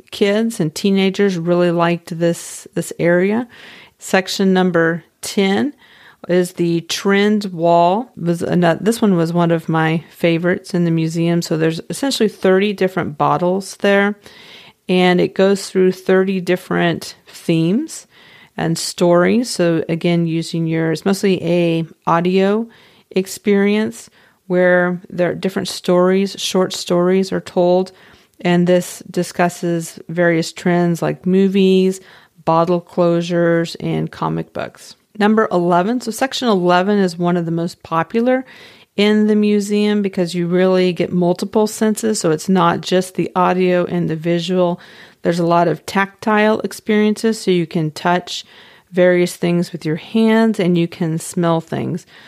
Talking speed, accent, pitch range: 135 wpm, American, 170-200 Hz